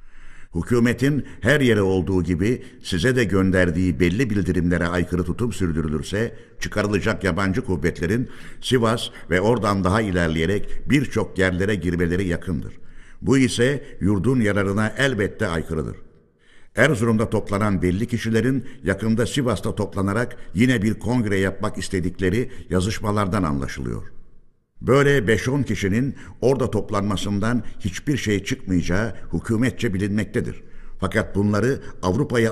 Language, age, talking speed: Turkish, 60-79, 105 wpm